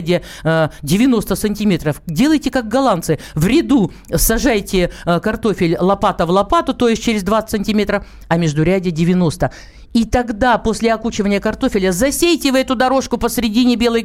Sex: male